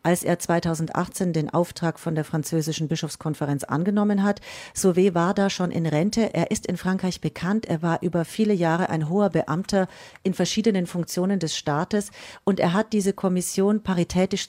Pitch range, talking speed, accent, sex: 160-195 Hz, 170 wpm, German, female